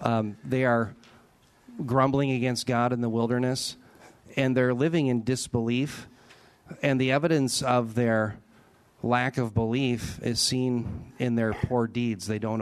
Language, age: English, 40-59